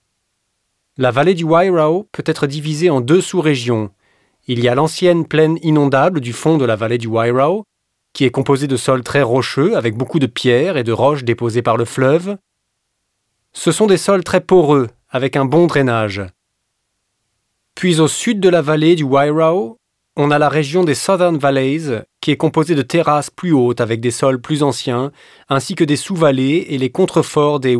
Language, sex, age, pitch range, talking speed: French, male, 30-49, 115-160 Hz, 185 wpm